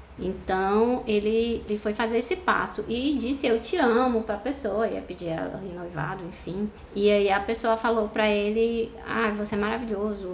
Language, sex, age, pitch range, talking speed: Portuguese, female, 20-39, 205-250 Hz, 180 wpm